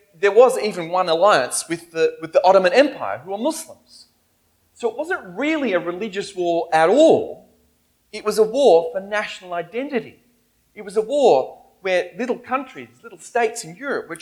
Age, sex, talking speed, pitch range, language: 40-59, male, 175 wpm, 140-215 Hz, English